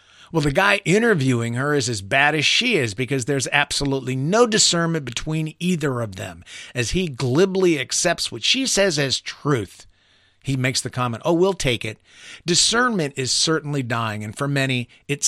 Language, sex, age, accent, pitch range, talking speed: English, male, 50-69, American, 120-165 Hz, 175 wpm